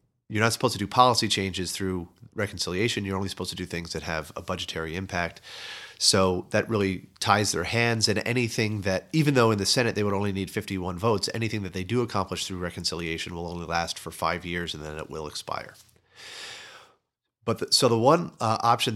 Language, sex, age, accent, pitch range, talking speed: English, male, 30-49, American, 90-110 Hz, 205 wpm